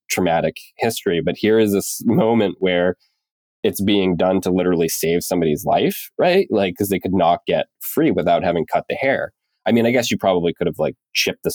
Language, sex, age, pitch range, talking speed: English, male, 20-39, 85-100 Hz, 210 wpm